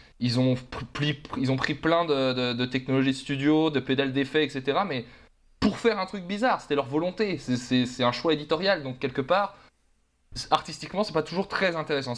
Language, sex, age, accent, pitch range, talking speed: French, male, 20-39, French, 120-155 Hz, 205 wpm